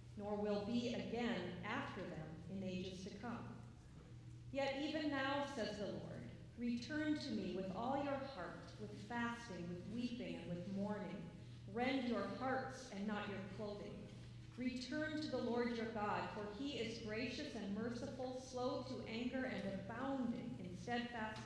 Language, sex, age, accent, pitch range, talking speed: English, female, 40-59, American, 185-250 Hz, 155 wpm